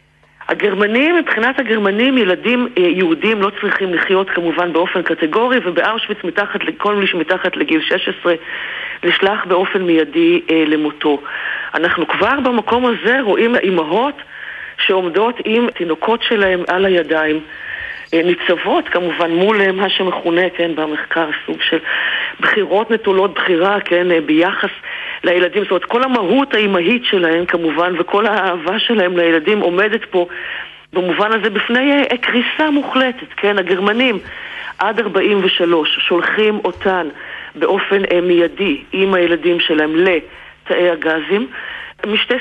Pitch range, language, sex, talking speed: 175-230 Hz, Hebrew, female, 115 wpm